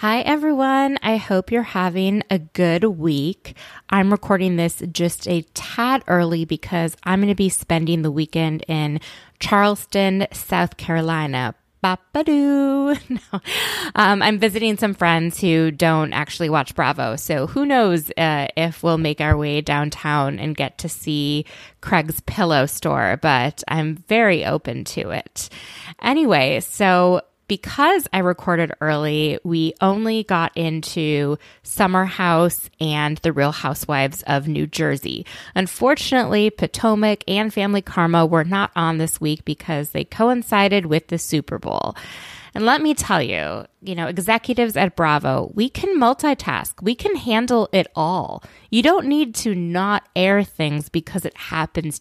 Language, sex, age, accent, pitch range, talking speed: English, female, 20-39, American, 155-215 Hz, 145 wpm